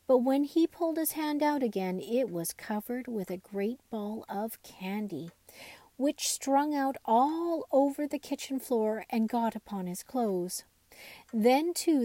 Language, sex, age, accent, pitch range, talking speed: English, female, 40-59, American, 200-270 Hz, 160 wpm